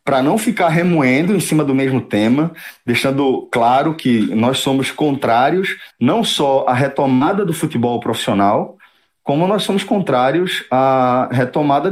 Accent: Brazilian